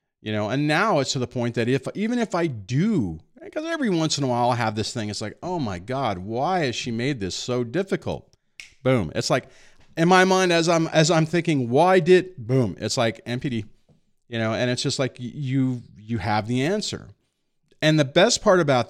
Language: English